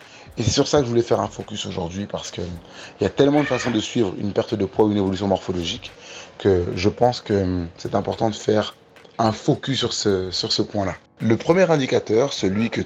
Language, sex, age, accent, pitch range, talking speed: French, male, 30-49, French, 95-125 Hz, 220 wpm